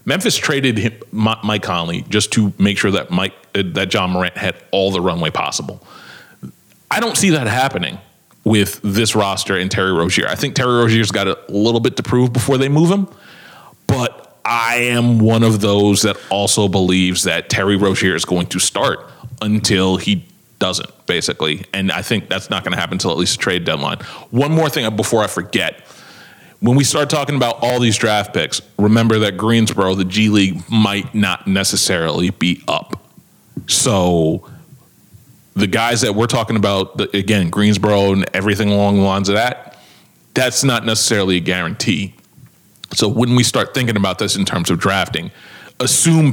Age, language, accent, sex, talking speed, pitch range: 30-49, English, American, male, 175 wpm, 95-120 Hz